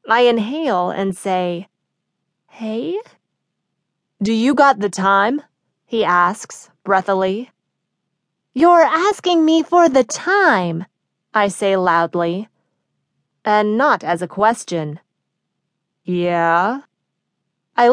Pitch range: 185-250 Hz